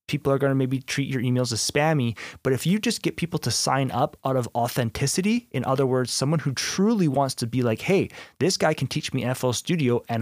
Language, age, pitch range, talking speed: English, 30-49, 120-155 Hz, 240 wpm